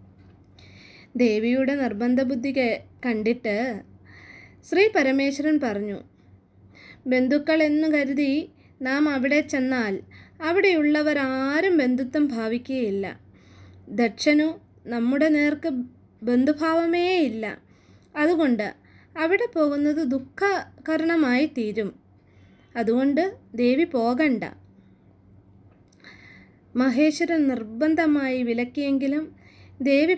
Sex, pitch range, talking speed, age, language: female, 210-295 Hz, 65 wpm, 20-39, Malayalam